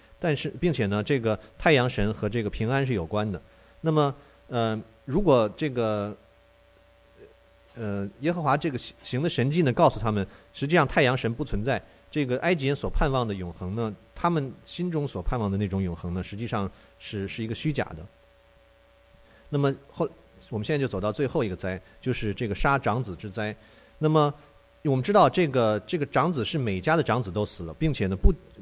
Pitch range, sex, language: 95-145 Hz, male, English